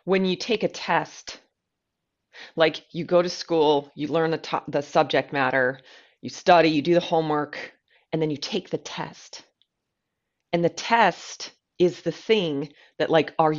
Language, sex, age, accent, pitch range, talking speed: English, female, 30-49, American, 150-175 Hz, 170 wpm